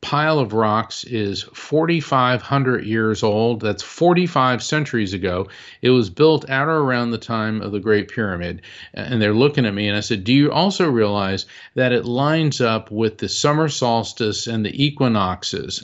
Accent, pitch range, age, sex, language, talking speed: American, 105-140 Hz, 40-59, male, English, 175 wpm